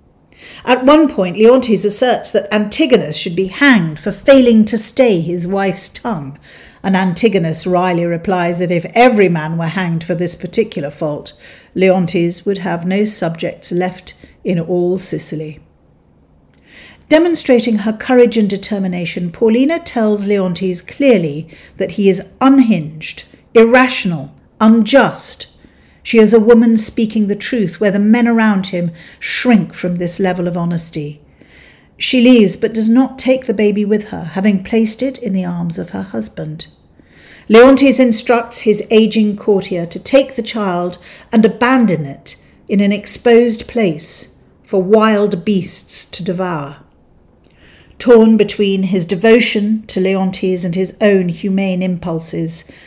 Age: 50-69